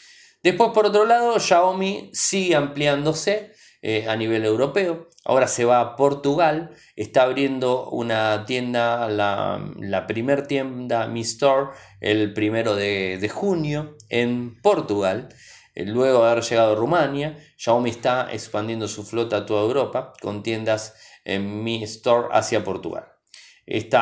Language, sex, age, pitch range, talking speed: Spanish, male, 20-39, 105-135 Hz, 135 wpm